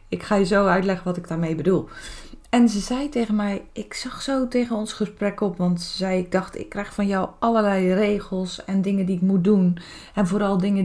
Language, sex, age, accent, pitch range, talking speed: Dutch, female, 20-39, Dutch, 175-215 Hz, 225 wpm